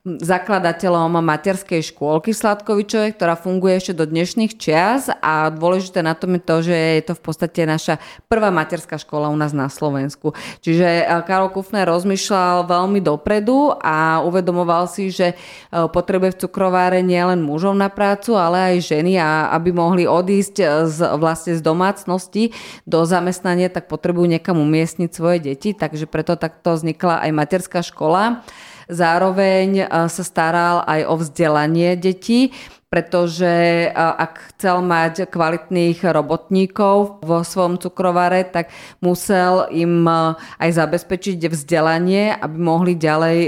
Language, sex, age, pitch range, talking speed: Slovak, female, 30-49, 165-185 Hz, 135 wpm